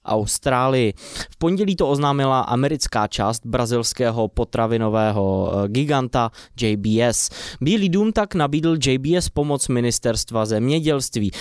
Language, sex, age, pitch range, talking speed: Czech, male, 20-39, 115-150 Hz, 100 wpm